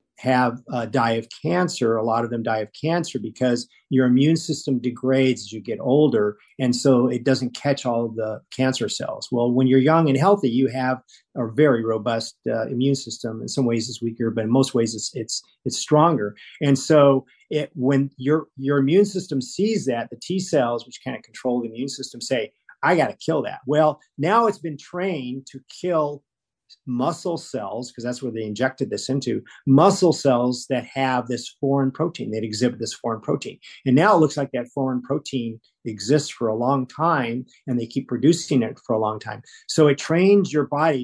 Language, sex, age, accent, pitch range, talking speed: English, male, 40-59, American, 120-145 Hz, 205 wpm